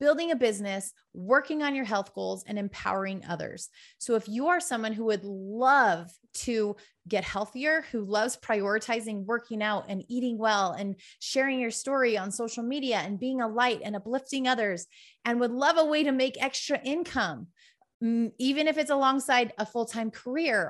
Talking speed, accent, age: 175 wpm, American, 30-49